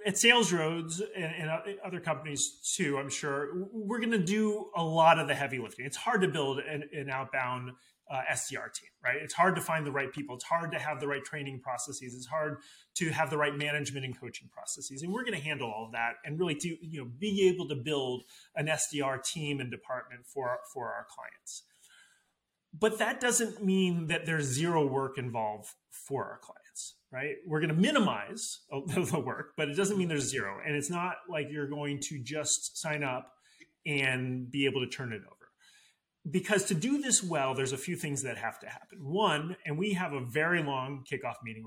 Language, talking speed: English, 210 wpm